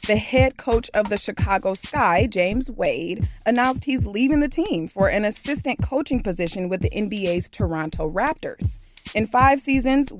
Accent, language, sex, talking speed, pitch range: American, English, female, 160 wpm, 190-255 Hz